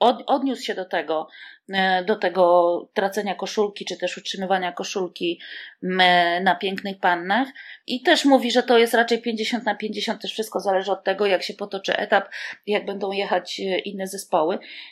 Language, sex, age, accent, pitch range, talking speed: Polish, female, 30-49, native, 185-230 Hz, 155 wpm